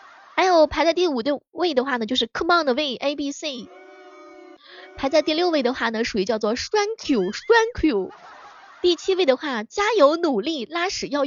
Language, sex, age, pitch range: Chinese, female, 20-39, 200-310 Hz